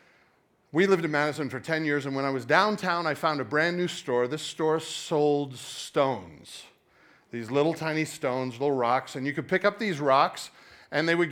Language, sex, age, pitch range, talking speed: English, male, 40-59, 135-165 Hz, 200 wpm